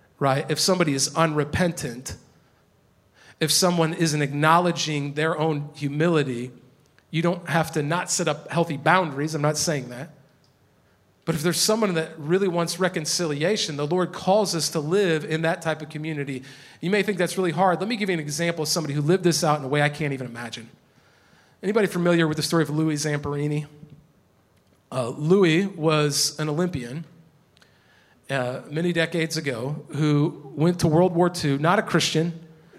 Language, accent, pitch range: English, American, 150-175 Hz